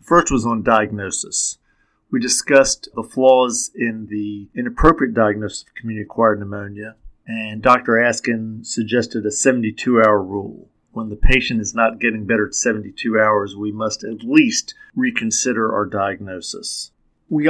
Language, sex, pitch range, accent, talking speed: English, male, 105-125 Hz, American, 135 wpm